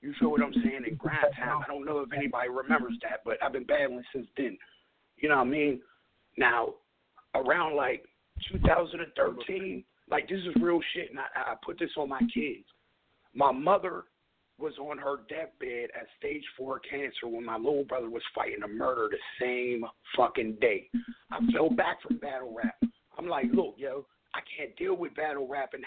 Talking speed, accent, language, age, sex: 190 wpm, American, English, 50-69, male